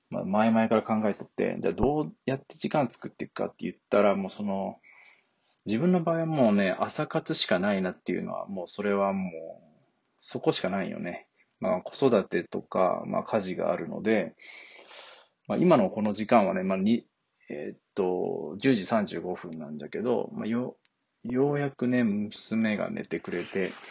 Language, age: Japanese, 20-39